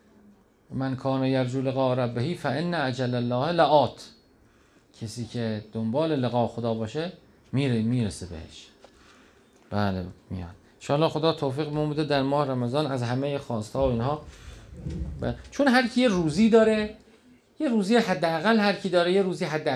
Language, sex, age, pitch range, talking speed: Persian, male, 40-59, 125-180 Hz, 145 wpm